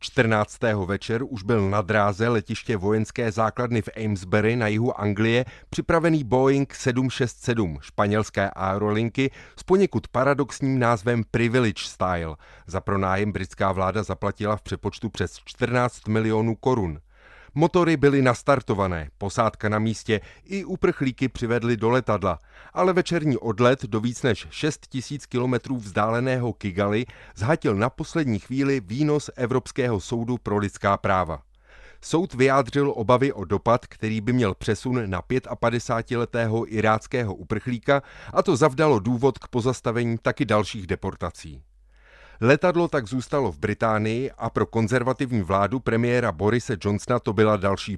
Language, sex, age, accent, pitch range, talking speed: Czech, male, 30-49, native, 105-130 Hz, 130 wpm